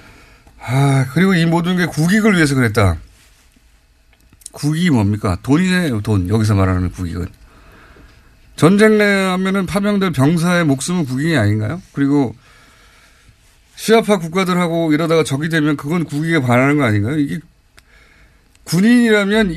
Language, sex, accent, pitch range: Korean, male, native, 110-180 Hz